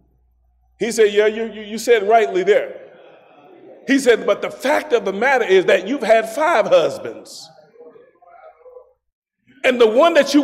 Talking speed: 155 wpm